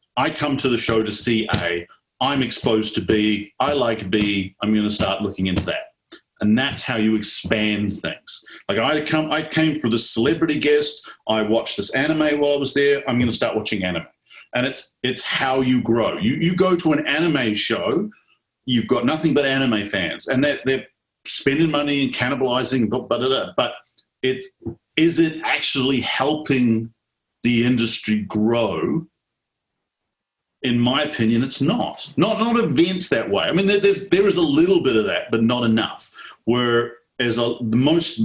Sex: male